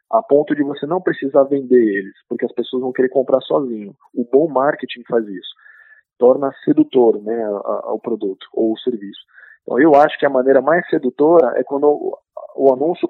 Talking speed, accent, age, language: 190 wpm, Brazilian, 20-39, Portuguese